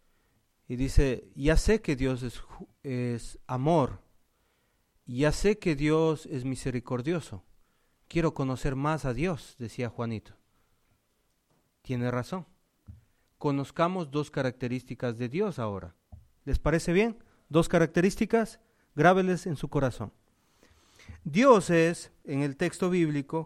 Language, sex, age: English, male, 40-59